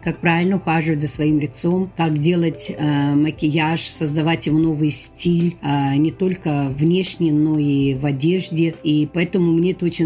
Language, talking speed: Russian, 160 wpm